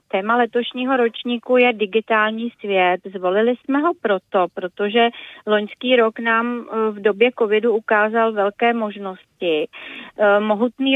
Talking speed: 115 wpm